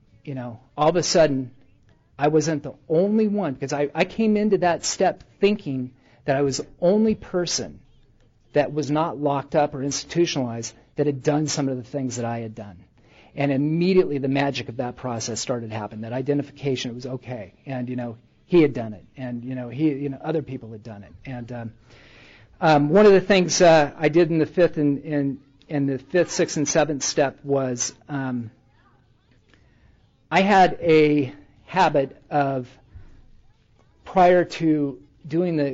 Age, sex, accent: 50-69, male, American